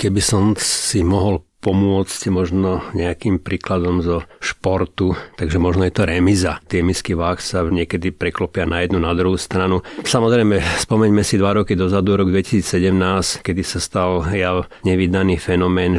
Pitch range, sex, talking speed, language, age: 90-100 Hz, male, 145 wpm, Slovak, 30-49